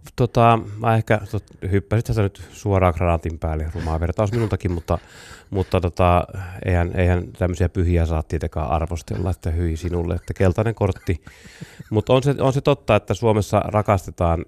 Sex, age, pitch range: male, 30-49, 80-95 Hz